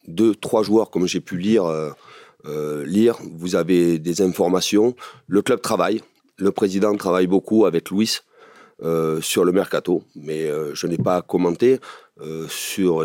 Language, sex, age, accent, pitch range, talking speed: French, male, 40-59, French, 80-100 Hz, 160 wpm